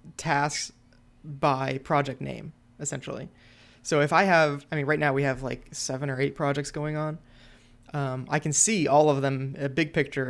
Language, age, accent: English, 20-39, American